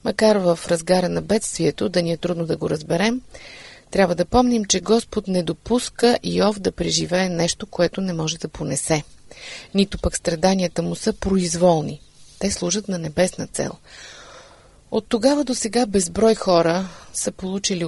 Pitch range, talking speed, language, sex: 170-215 Hz, 160 wpm, Bulgarian, female